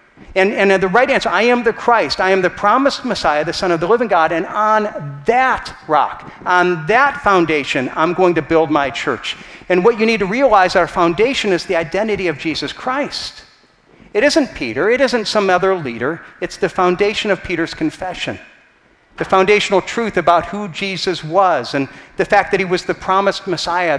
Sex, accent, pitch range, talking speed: male, American, 160-205 Hz, 195 wpm